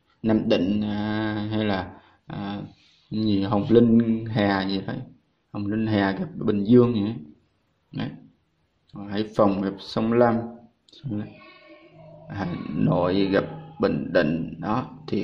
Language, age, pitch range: Vietnamese, 20-39, 105-120 Hz